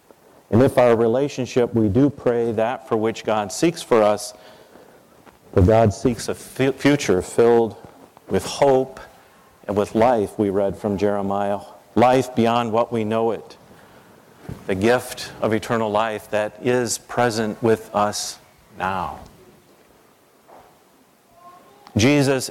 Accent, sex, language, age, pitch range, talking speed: American, male, English, 50-69, 110-120 Hz, 130 wpm